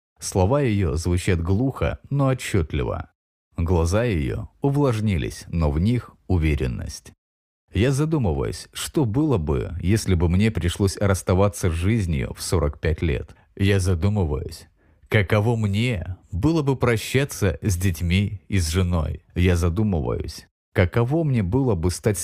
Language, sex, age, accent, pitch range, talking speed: Russian, male, 30-49, native, 85-110 Hz, 125 wpm